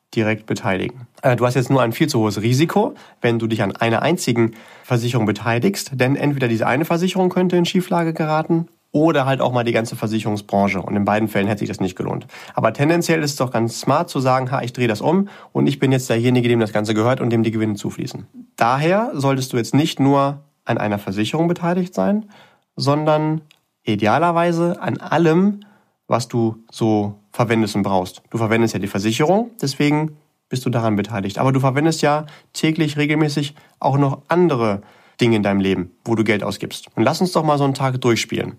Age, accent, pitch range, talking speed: 30-49, German, 110-150 Hz, 200 wpm